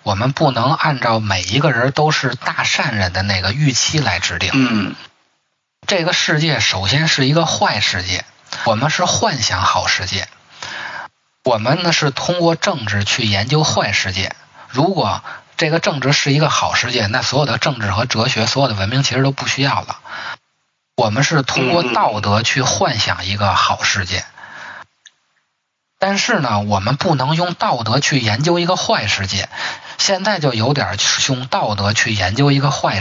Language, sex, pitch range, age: Chinese, male, 110-150 Hz, 20-39